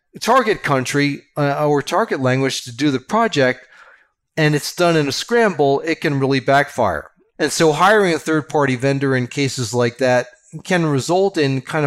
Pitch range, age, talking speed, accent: 125-150 Hz, 40-59, 170 wpm, American